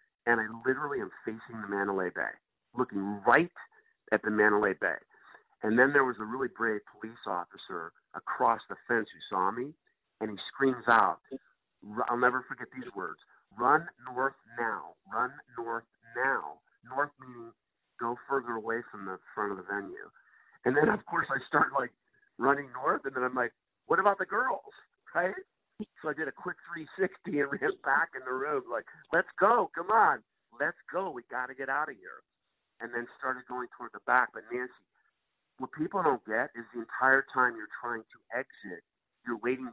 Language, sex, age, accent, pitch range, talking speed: English, male, 50-69, American, 115-135 Hz, 185 wpm